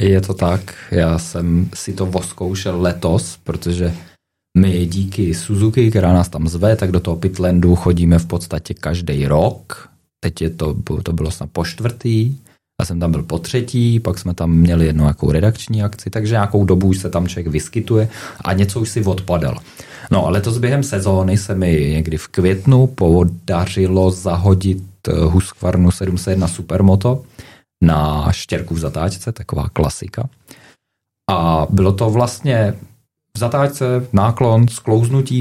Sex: male